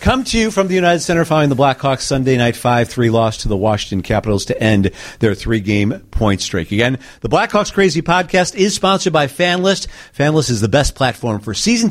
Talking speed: 210 wpm